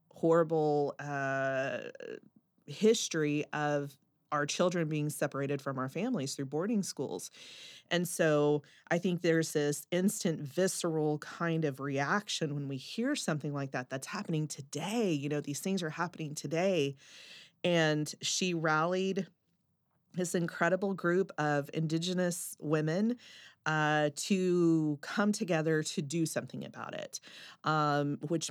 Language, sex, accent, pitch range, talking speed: English, female, American, 145-175 Hz, 130 wpm